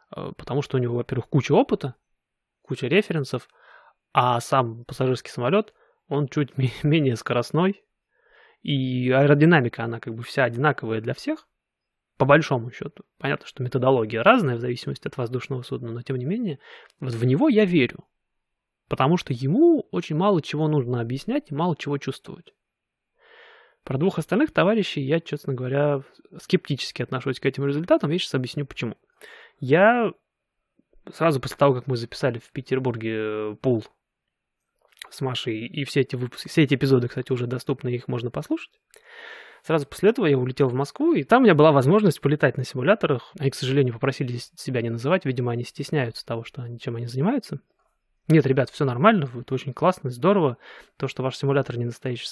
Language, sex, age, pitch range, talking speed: Russian, male, 20-39, 125-165 Hz, 165 wpm